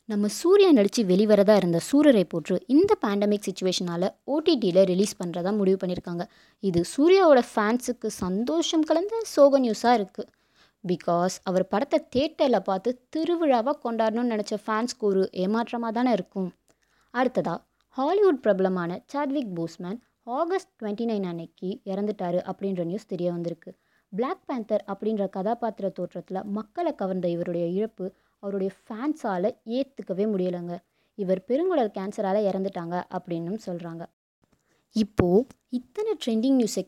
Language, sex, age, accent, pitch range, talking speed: Tamil, female, 20-39, native, 190-255 Hz, 120 wpm